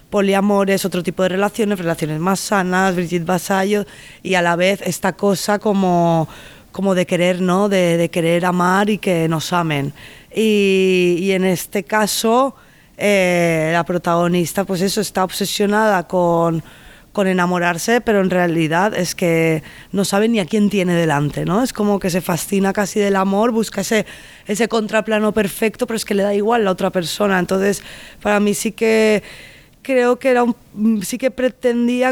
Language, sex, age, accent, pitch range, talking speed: Spanish, female, 20-39, Spanish, 175-205 Hz, 170 wpm